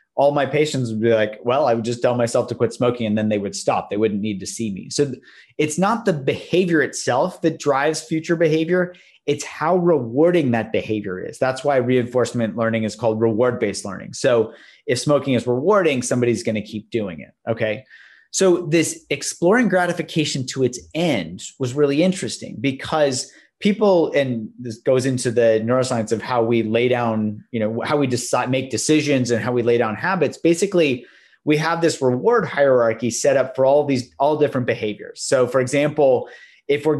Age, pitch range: 30-49, 115-155 Hz